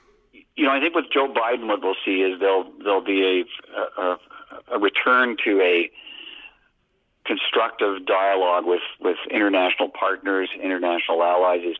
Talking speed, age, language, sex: 145 wpm, 50-69, English, male